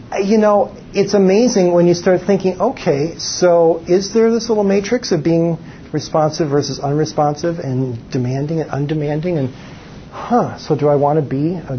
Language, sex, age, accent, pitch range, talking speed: English, male, 50-69, American, 140-175 Hz, 170 wpm